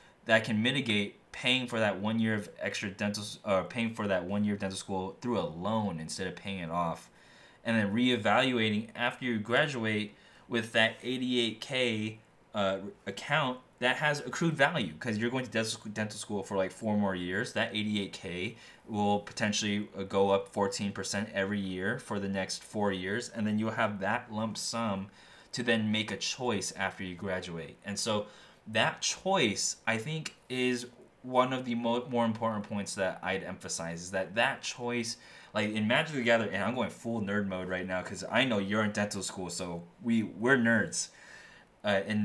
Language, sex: English, male